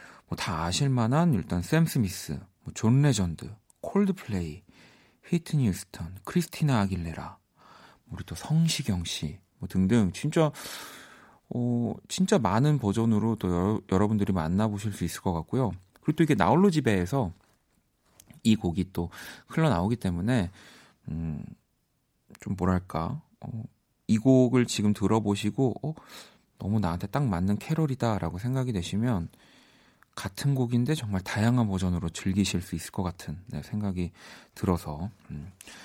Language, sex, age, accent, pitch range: Korean, male, 40-59, native, 95-130 Hz